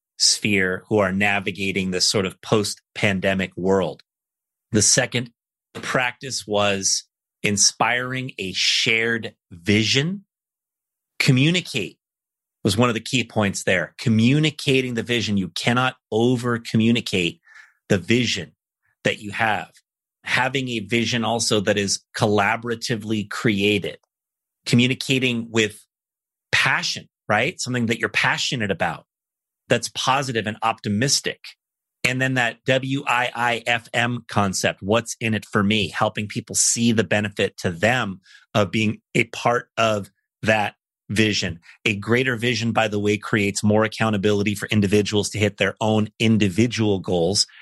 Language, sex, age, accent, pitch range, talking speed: English, male, 30-49, American, 105-120 Hz, 125 wpm